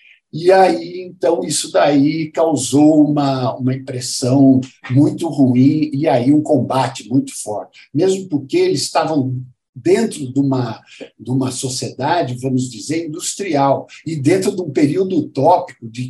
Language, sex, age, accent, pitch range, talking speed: Portuguese, male, 60-79, Brazilian, 130-160 Hz, 135 wpm